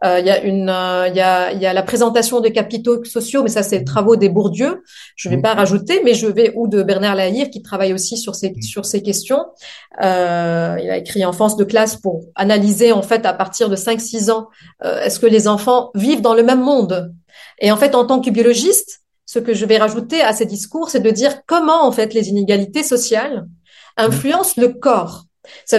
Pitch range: 205-270 Hz